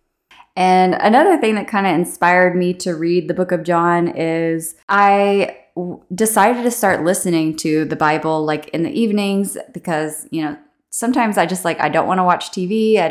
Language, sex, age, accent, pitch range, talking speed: English, female, 20-39, American, 160-185 Hz, 190 wpm